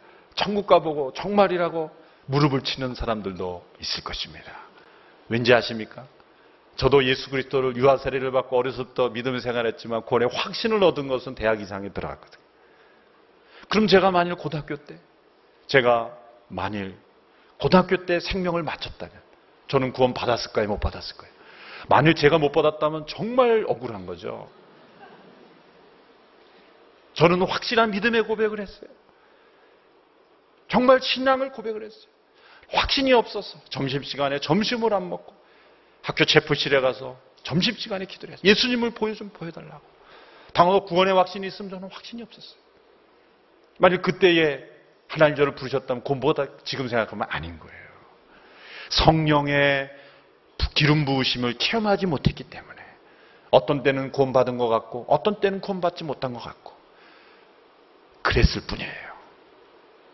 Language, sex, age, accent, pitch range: Korean, male, 40-59, native, 130-215 Hz